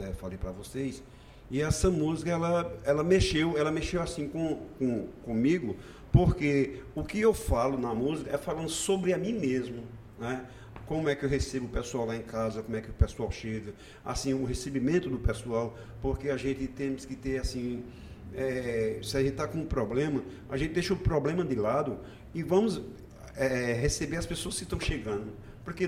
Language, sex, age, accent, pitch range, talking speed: Portuguese, male, 50-69, Brazilian, 115-150 Hz, 190 wpm